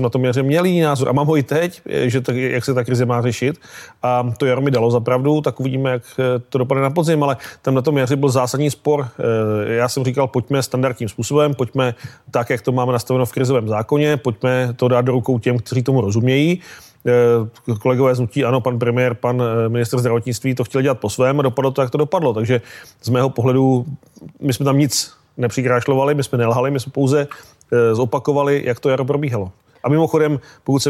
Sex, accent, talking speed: male, native, 210 wpm